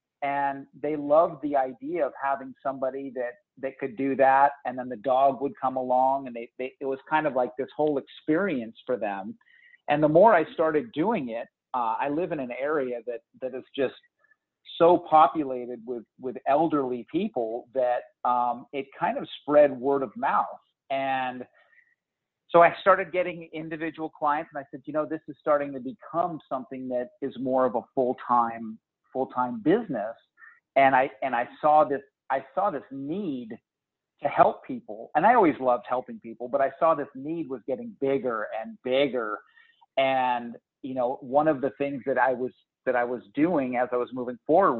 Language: English